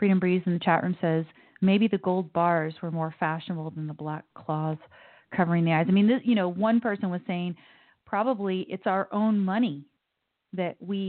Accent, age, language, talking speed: American, 30-49, English, 200 wpm